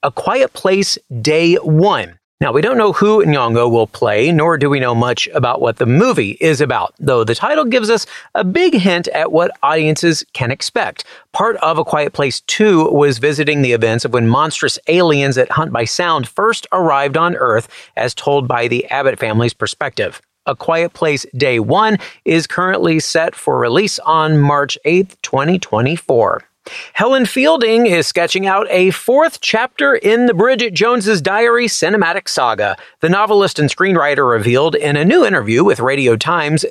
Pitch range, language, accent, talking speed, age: 150-225 Hz, English, American, 175 wpm, 40-59